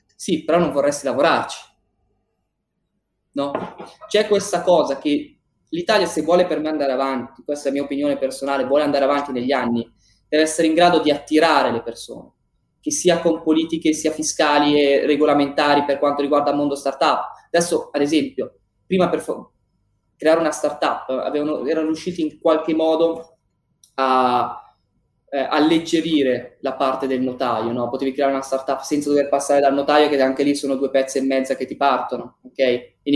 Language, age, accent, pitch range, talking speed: Italian, 20-39, native, 135-160 Hz, 170 wpm